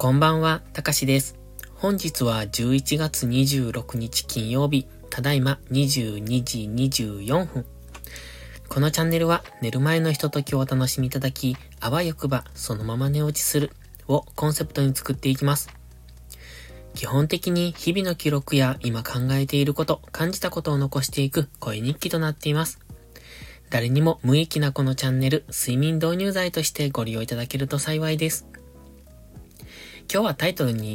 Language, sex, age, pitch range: Japanese, male, 20-39, 115-155 Hz